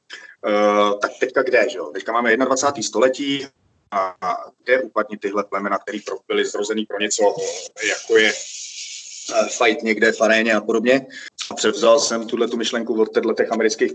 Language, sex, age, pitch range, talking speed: Slovak, male, 30-49, 110-120 Hz, 165 wpm